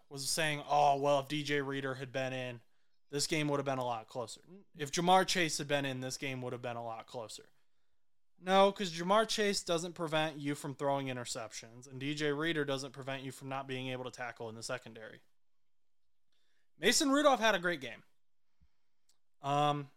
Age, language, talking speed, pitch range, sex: 20-39, English, 190 wpm, 130-160 Hz, male